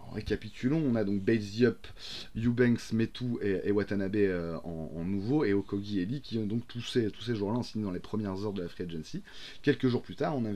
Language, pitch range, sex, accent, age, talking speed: French, 90-120 Hz, male, French, 30-49, 235 wpm